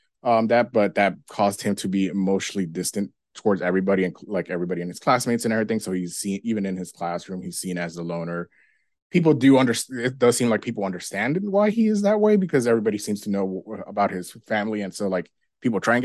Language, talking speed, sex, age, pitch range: English, 225 wpm, male, 20-39, 100-125 Hz